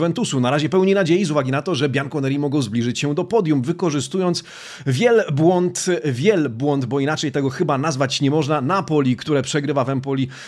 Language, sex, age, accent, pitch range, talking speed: Polish, male, 30-49, native, 135-180 Hz, 185 wpm